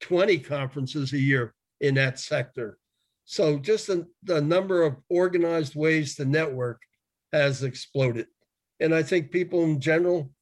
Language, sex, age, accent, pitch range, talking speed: English, male, 50-69, American, 140-160 Hz, 145 wpm